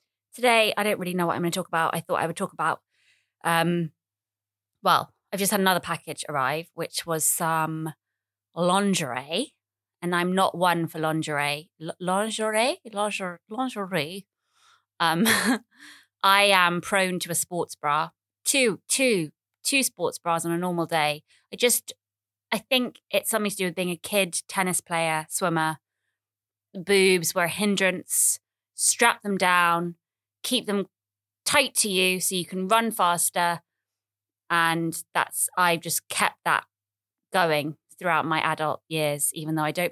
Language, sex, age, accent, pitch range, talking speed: English, female, 20-39, British, 155-195 Hz, 155 wpm